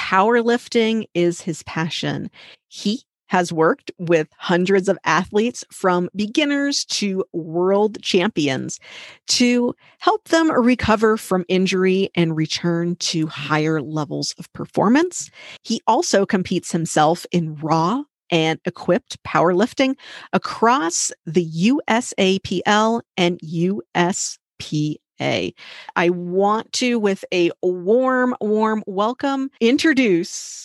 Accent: American